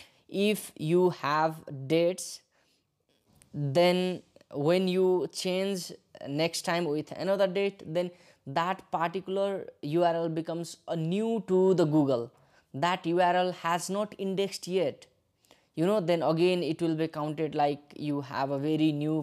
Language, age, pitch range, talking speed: English, 20-39, 155-185 Hz, 135 wpm